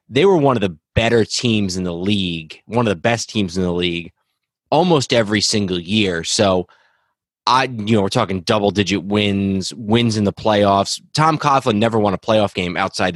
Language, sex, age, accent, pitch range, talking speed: English, male, 30-49, American, 95-115 Hz, 190 wpm